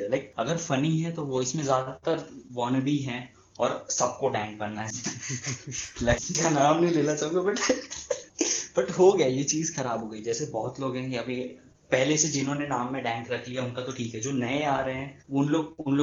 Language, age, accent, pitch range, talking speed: Hindi, 20-39, native, 120-140 Hz, 80 wpm